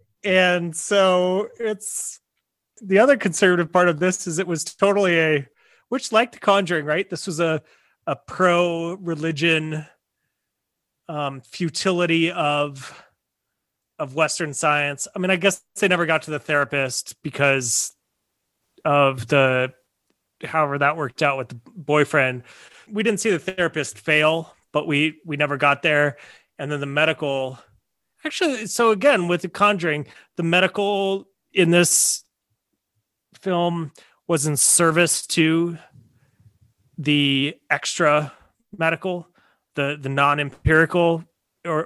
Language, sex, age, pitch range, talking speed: English, male, 30-49, 140-175 Hz, 130 wpm